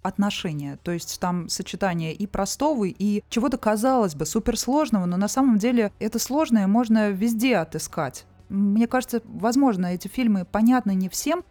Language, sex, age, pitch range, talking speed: Russian, female, 20-39, 170-215 Hz, 150 wpm